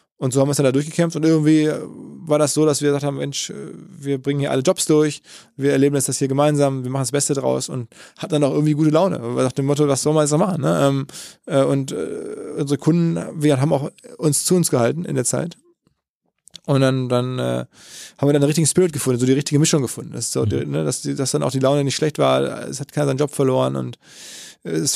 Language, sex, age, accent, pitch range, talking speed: German, male, 20-39, German, 125-150 Hz, 240 wpm